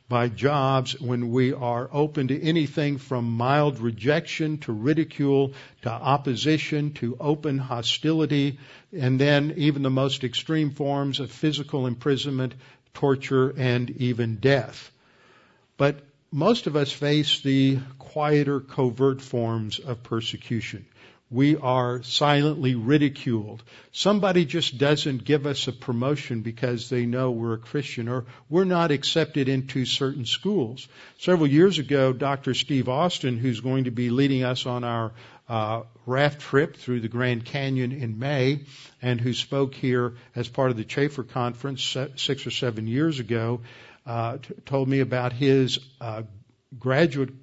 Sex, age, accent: male, 50-69, American